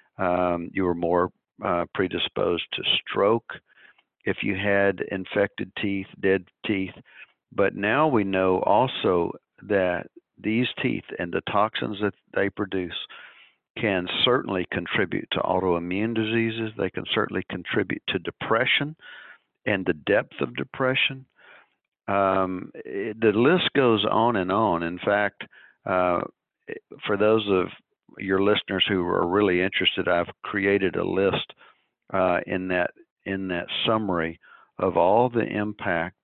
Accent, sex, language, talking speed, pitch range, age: American, male, English, 130 wpm, 90-105 Hz, 50-69